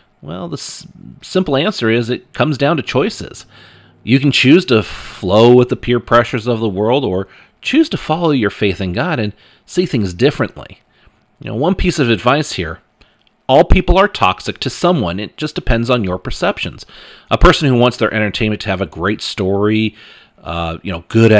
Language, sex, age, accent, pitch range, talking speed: English, male, 40-59, American, 95-120 Hz, 195 wpm